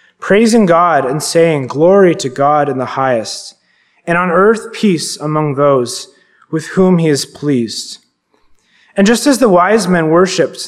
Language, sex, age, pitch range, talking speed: English, male, 20-39, 135-190 Hz, 155 wpm